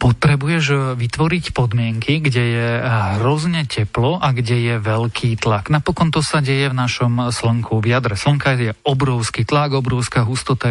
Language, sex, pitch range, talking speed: Slovak, male, 115-135 Hz, 150 wpm